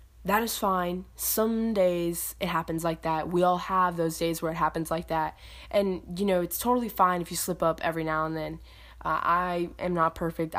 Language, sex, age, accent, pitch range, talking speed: English, female, 20-39, American, 160-185 Hz, 215 wpm